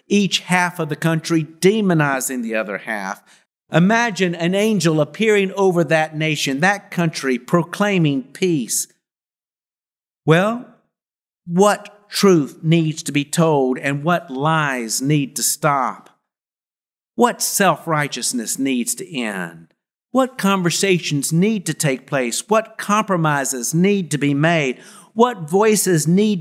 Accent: American